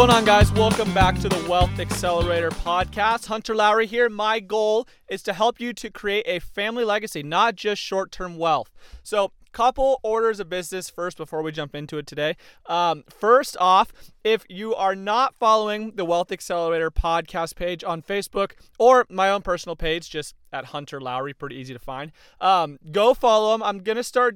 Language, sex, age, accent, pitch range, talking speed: English, male, 30-49, American, 165-215 Hz, 185 wpm